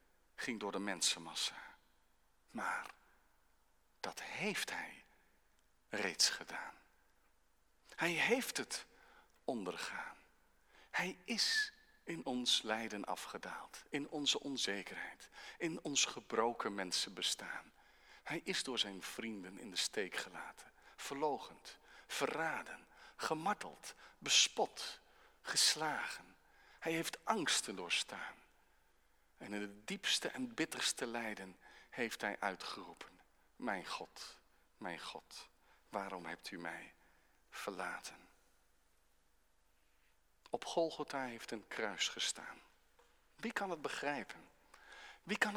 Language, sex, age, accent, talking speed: Dutch, male, 50-69, Dutch, 100 wpm